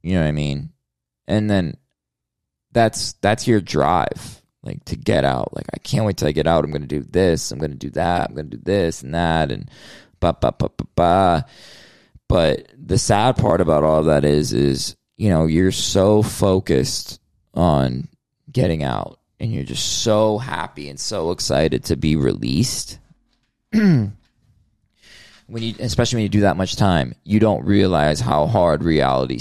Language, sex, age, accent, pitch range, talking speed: English, male, 20-39, American, 75-110 Hz, 175 wpm